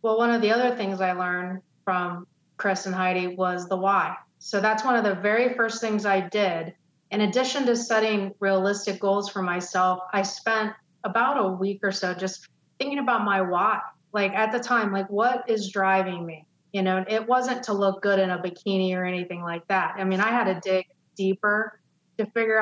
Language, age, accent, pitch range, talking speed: English, 30-49, American, 185-215 Hz, 205 wpm